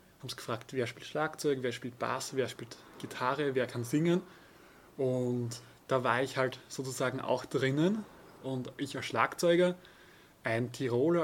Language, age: German, 20-39